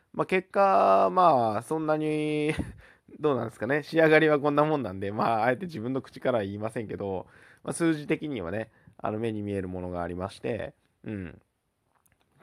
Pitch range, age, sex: 105-155 Hz, 20-39, male